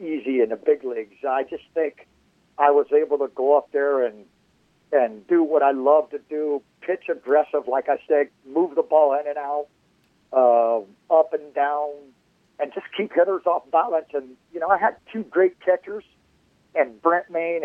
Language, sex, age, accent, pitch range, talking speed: English, male, 50-69, American, 135-190 Hz, 185 wpm